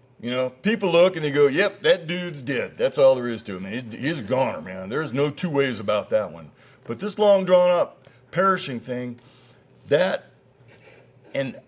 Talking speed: 195 wpm